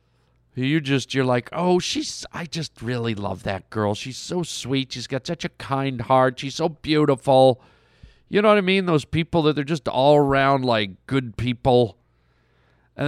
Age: 50-69